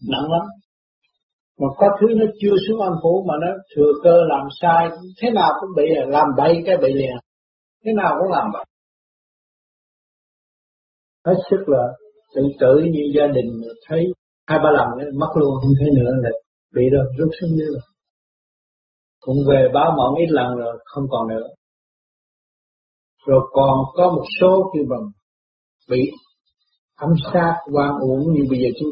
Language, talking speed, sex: Vietnamese, 165 wpm, male